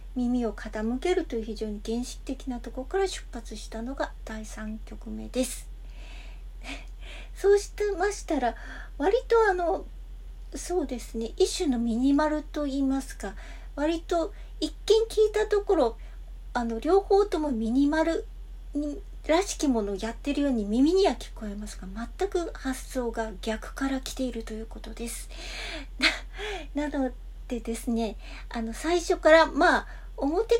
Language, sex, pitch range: Japanese, female, 230-320 Hz